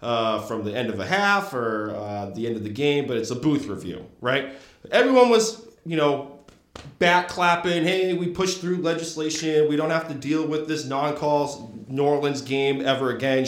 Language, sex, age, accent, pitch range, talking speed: English, male, 30-49, American, 115-155 Hz, 195 wpm